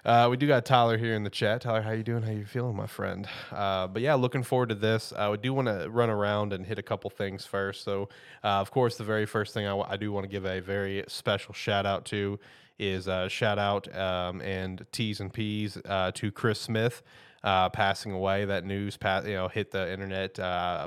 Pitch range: 100-115 Hz